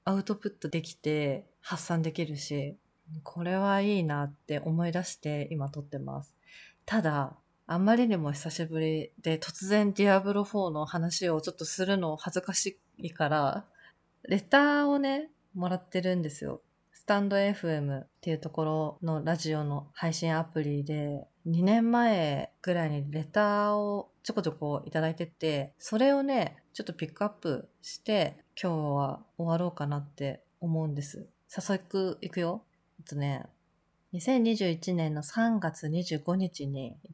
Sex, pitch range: female, 155-195 Hz